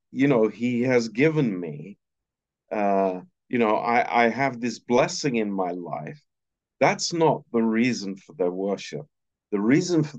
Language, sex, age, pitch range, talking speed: Romanian, male, 50-69, 105-140 Hz, 160 wpm